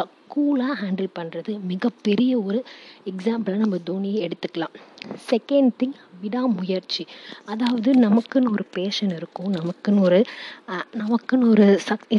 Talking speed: 110 wpm